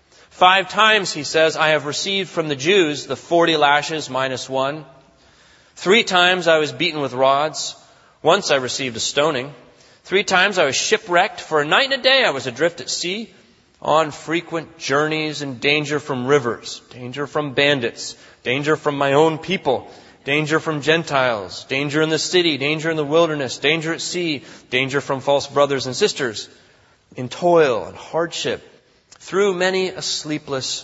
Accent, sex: American, male